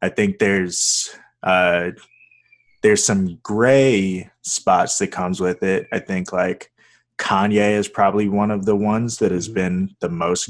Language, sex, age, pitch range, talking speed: English, male, 20-39, 95-110 Hz, 155 wpm